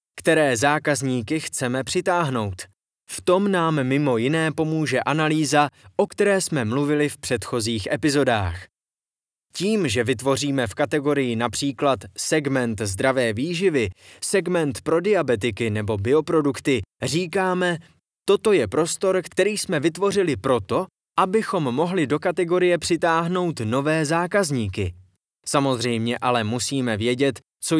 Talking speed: 110 wpm